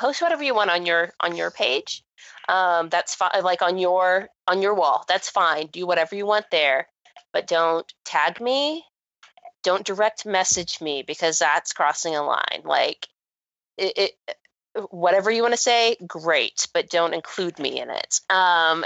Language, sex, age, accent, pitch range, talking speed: English, female, 20-39, American, 180-220 Hz, 170 wpm